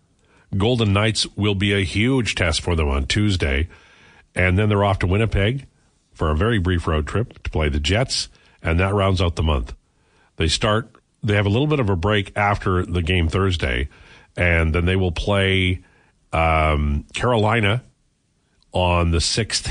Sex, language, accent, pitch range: male, English, American, 80-100 Hz